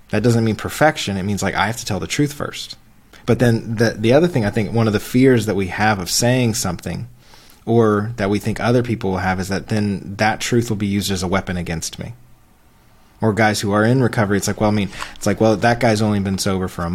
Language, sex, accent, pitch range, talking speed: English, male, American, 95-115 Hz, 260 wpm